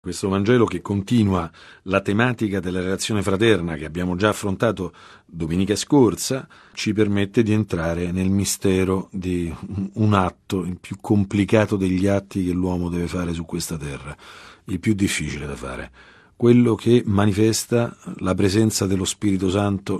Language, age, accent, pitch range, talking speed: Italian, 40-59, native, 90-110 Hz, 145 wpm